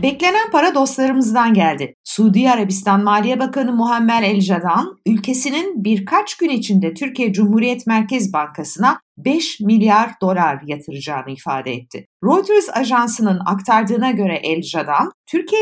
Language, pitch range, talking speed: Turkish, 180-255 Hz, 115 wpm